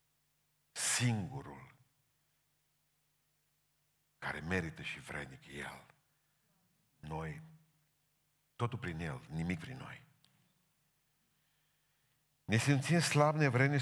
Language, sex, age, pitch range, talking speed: Romanian, male, 50-69, 95-150 Hz, 75 wpm